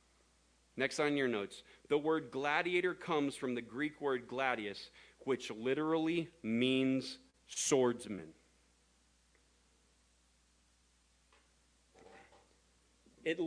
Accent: American